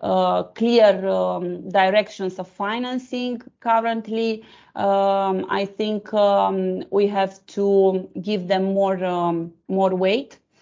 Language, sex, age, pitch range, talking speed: German, female, 30-49, 185-225 Hz, 115 wpm